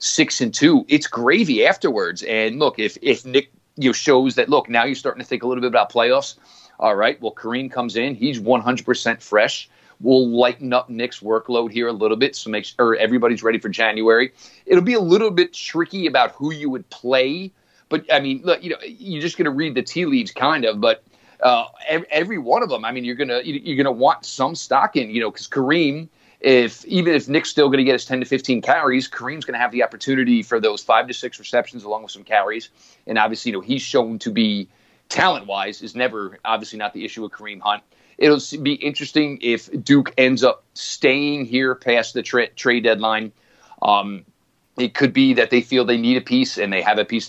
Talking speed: 225 wpm